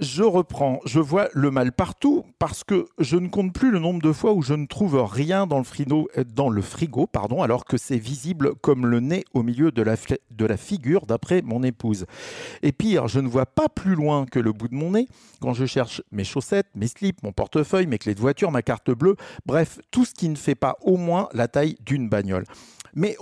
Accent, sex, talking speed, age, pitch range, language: French, male, 235 wpm, 50-69, 125-175 Hz, French